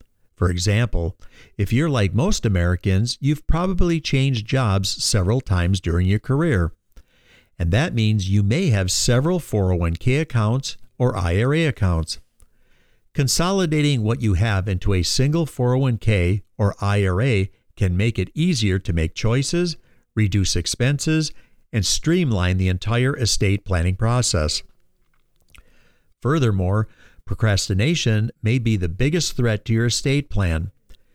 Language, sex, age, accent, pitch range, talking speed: English, male, 50-69, American, 95-130 Hz, 125 wpm